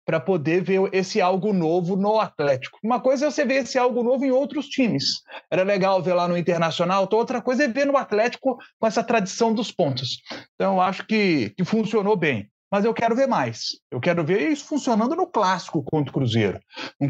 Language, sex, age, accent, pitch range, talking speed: Portuguese, male, 40-59, Brazilian, 160-220 Hz, 205 wpm